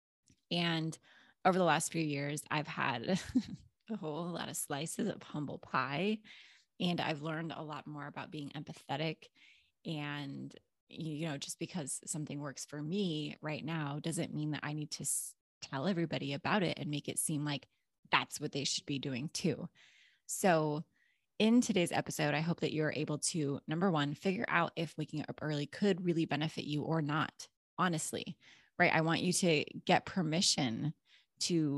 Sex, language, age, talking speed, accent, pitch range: female, English, 20-39, 170 wpm, American, 145-170 Hz